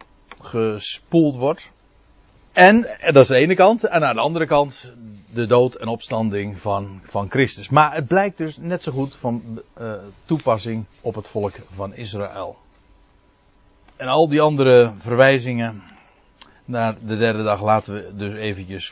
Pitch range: 105-160 Hz